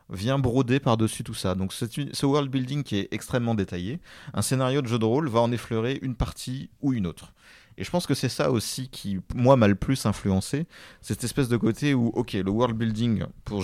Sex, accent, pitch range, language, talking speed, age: male, French, 95-125 Hz, French, 220 wpm, 30-49